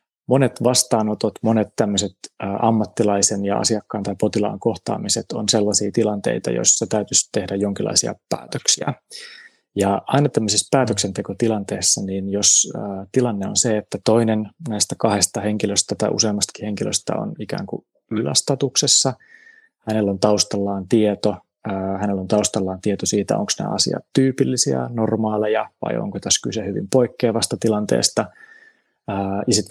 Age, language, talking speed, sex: 20-39, Finnish, 115 wpm, male